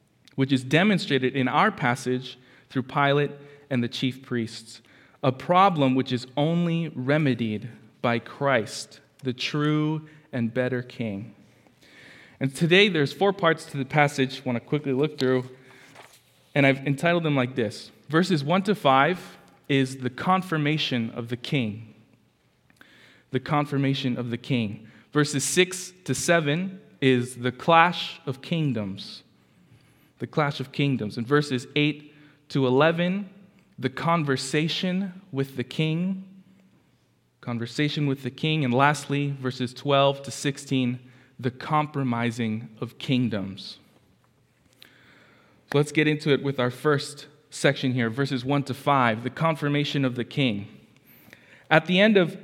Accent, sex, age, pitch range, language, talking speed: American, male, 20-39, 125-155 Hz, English, 135 wpm